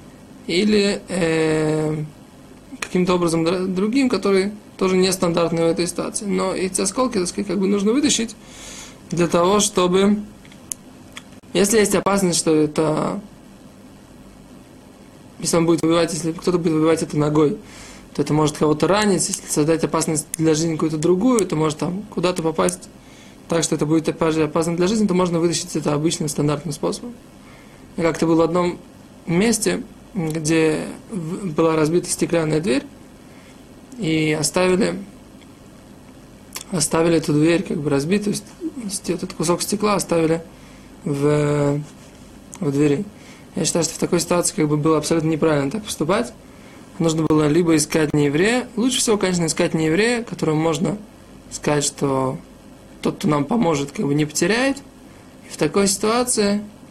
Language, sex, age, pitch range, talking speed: Russian, male, 20-39, 155-195 Hz, 145 wpm